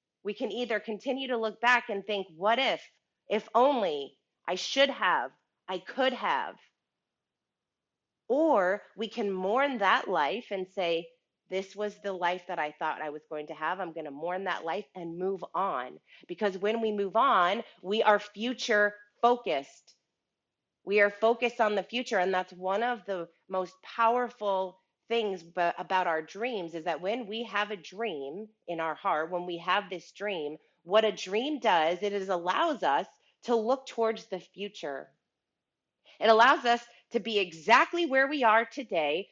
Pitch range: 185-235 Hz